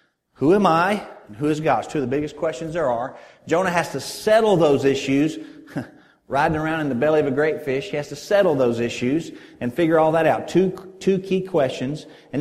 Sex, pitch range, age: male, 135-175 Hz, 40-59